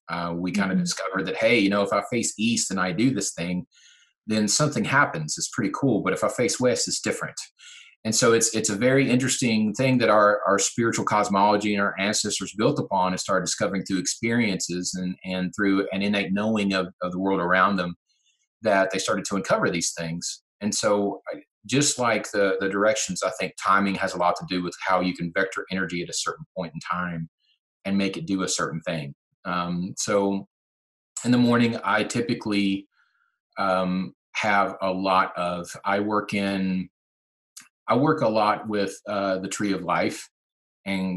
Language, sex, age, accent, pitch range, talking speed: English, male, 30-49, American, 90-110 Hz, 195 wpm